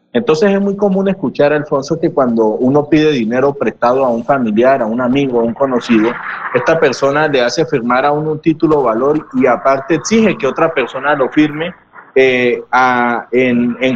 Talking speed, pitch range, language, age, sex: 185 wpm, 125-165 Hz, Spanish, 30-49, male